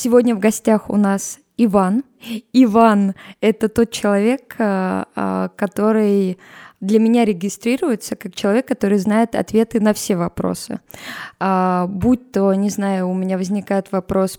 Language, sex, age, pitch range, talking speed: Russian, female, 20-39, 195-225 Hz, 125 wpm